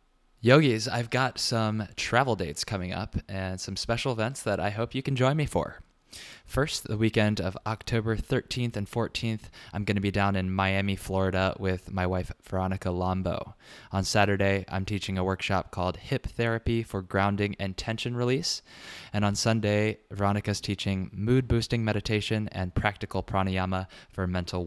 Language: English